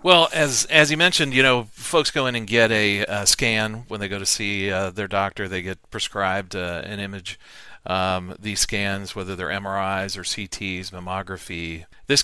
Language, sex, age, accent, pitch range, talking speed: English, male, 40-59, American, 95-115 Hz, 190 wpm